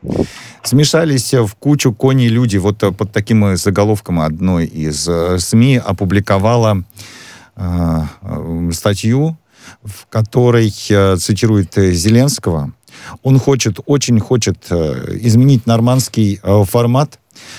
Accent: native